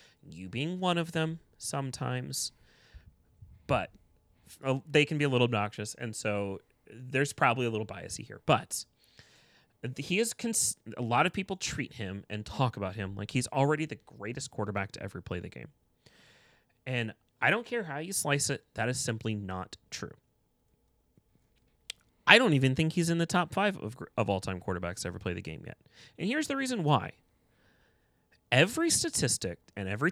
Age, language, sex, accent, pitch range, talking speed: 30-49, English, male, American, 105-145 Hz, 175 wpm